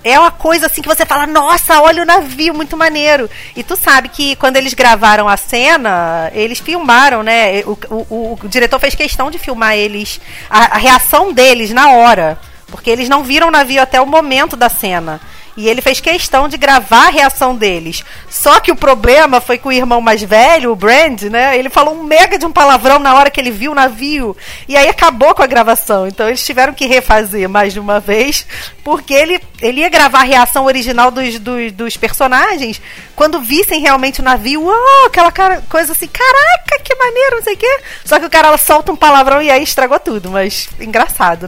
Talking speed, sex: 210 wpm, female